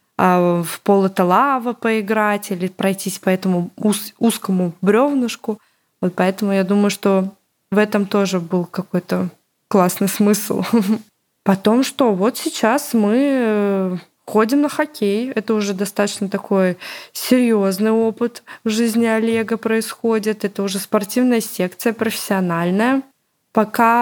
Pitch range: 195-235 Hz